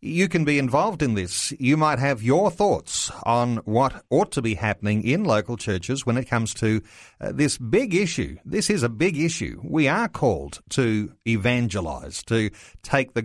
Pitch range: 110-135 Hz